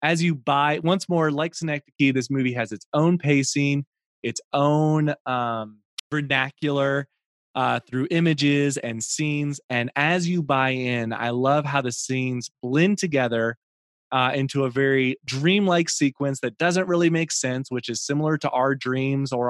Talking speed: 160 wpm